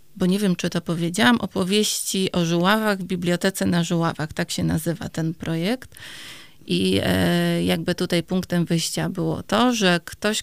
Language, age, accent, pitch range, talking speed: Polish, 30-49, native, 170-200 Hz, 155 wpm